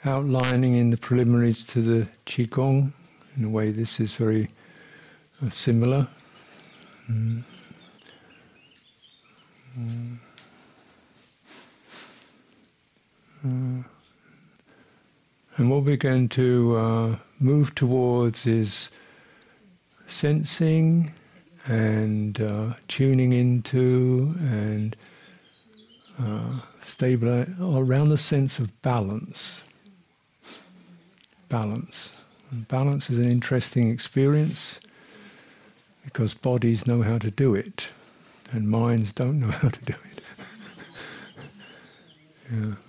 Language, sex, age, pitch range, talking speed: English, male, 60-79, 115-140 Hz, 90 wpm